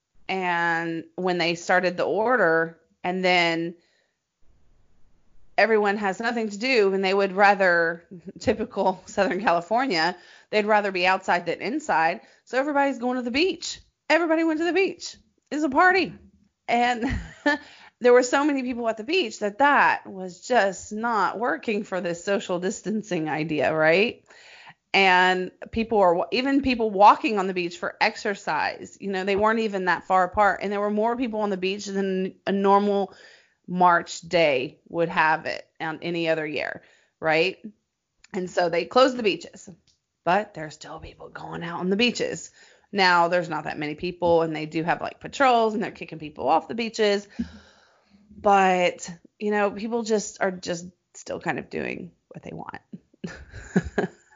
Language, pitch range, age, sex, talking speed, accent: English, 175-225 Hz, 30-49, female, 165 wpm, American